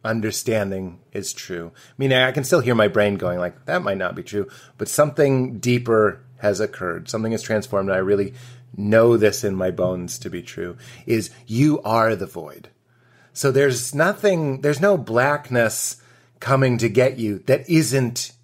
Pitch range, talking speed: 110-135 Hz, 175 wpm